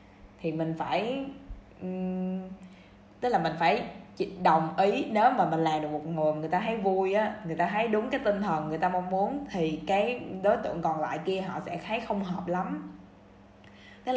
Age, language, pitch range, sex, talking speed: 10-29, Vietnamese, 175-210 Hz, female, 195 wpm